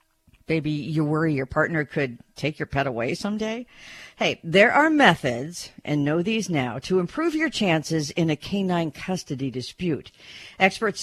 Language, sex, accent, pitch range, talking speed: English, female, American, 140-185 Hz, 160 wpm